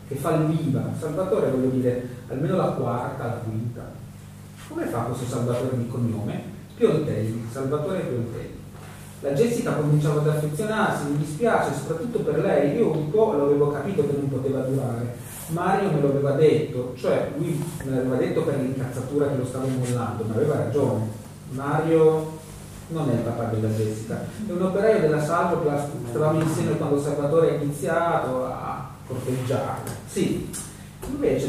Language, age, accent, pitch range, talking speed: Italian, 30-49, native, 125-155 Hz, 150 wpm